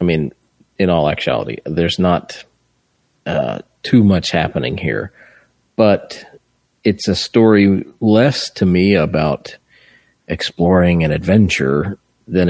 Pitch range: 80-100 Hz